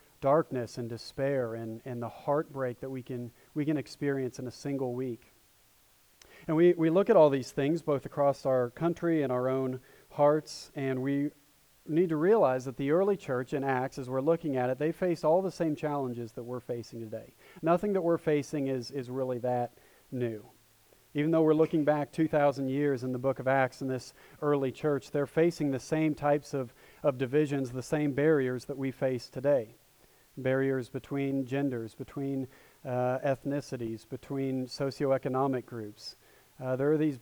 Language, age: English, 40-59